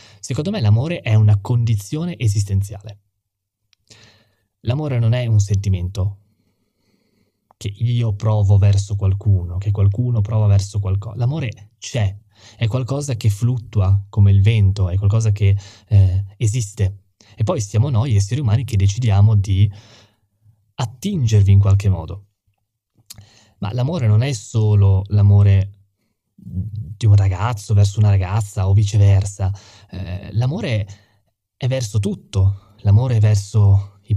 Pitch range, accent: 100-110 Hz, native